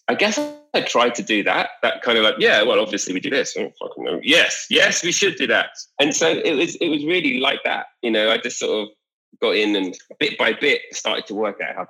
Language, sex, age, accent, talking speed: English, male, 30-49, British, 250 wpm